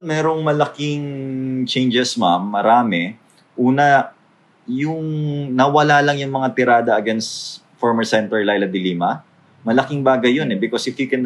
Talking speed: 140 wpm